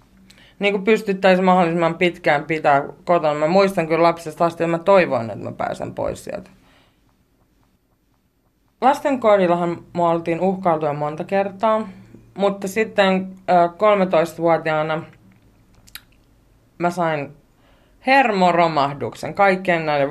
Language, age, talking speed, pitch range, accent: Finnish, 30-49, 95 wpm, 155-190 Hz, native